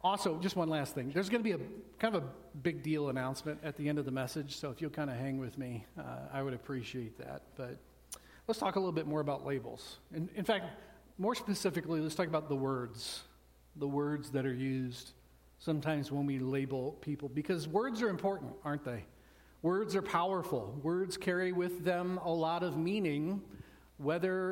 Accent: American